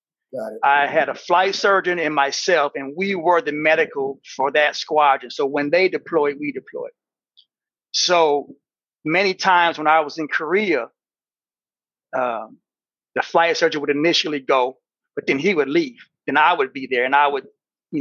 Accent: American